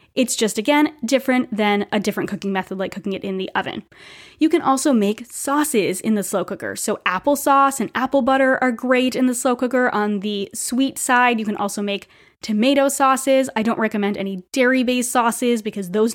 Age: 20-39